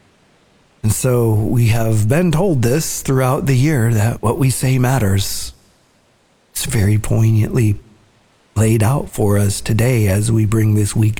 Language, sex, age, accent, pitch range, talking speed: English, male, 50-69, American, 105-120 Hz, 150 wpm